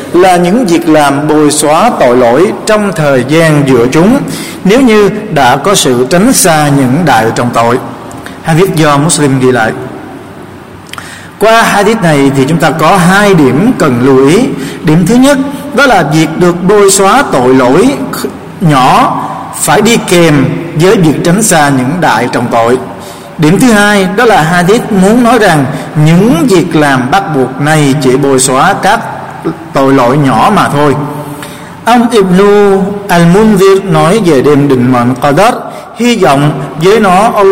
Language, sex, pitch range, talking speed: Vietnamese, male, 140-200 Hz, 165 wpm